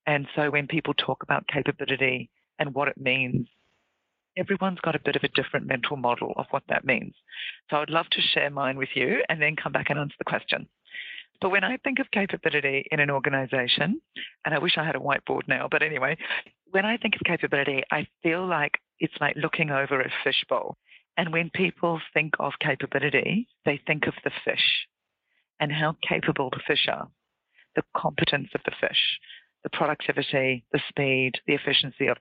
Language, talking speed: English, 190 wpm